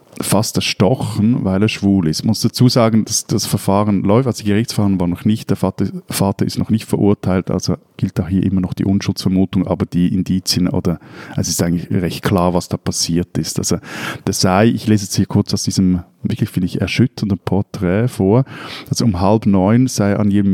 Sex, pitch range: male, 95-115 Hz